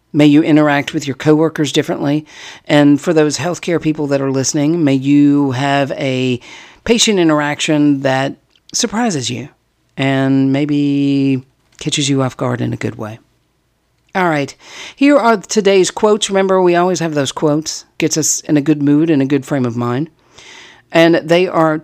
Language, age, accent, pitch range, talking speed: English, 50-69, American, 140-190 Hz, 170 wpm